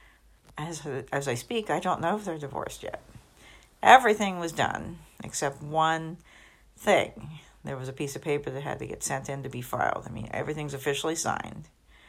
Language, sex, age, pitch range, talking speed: English, female, 60-79, 135-170 Hz, 185 wpm